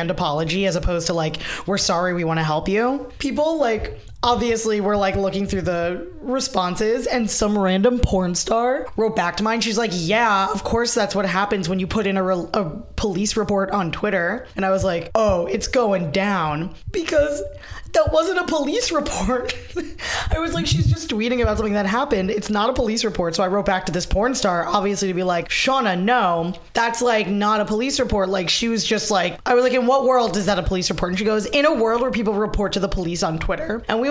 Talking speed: 225 wpm